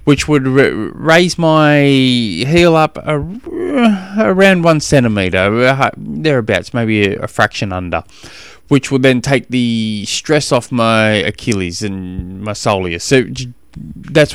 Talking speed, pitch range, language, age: 115 wpm, 100-130 Hz, English, 20-39